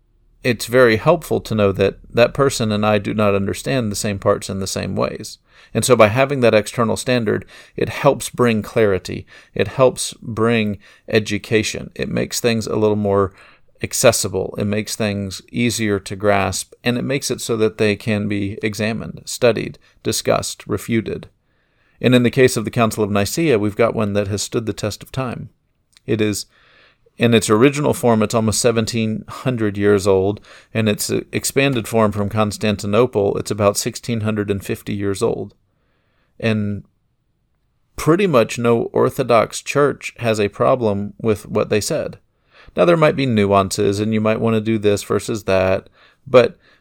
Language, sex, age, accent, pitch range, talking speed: English, male, 40-59, American, 105-120 Hz, 165 wpm